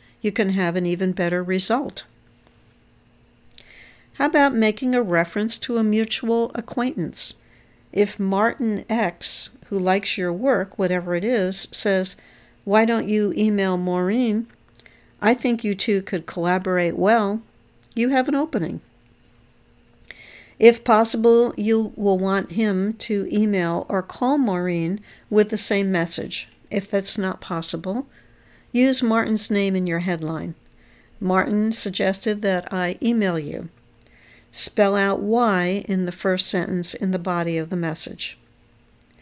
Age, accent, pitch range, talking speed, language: 60-79, American, 185-230 Hz, 135 wpm, English